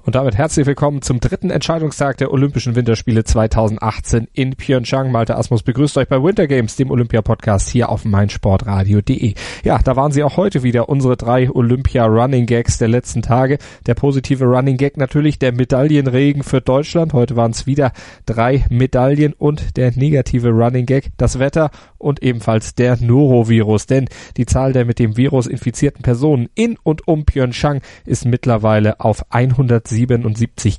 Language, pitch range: German, 115-135 Hz